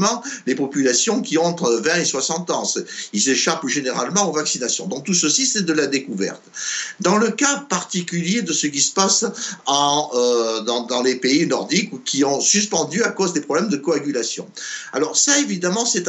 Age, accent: 60-79, French